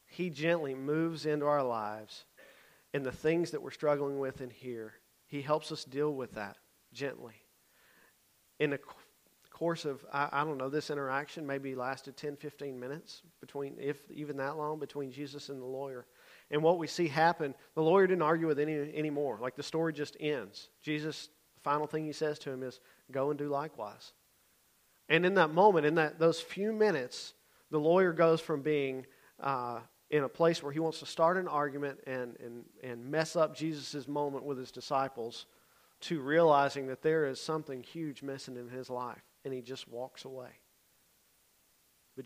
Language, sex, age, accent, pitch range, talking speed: English, male, 40-59, American, 130-155 Hz, 185 wpm